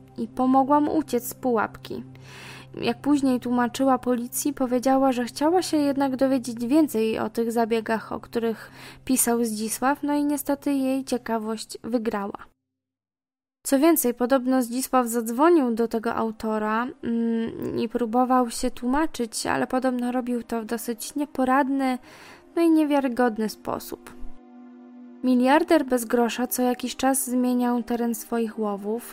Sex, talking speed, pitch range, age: female, 130 wpm, 230-270 Hz, 10-29